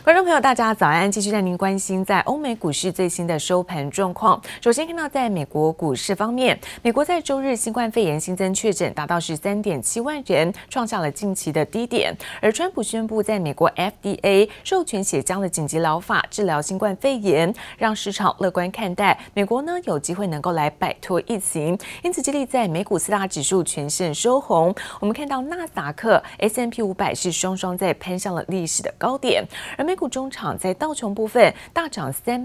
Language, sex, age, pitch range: Chinese, female, 20-39, 180-240 Hz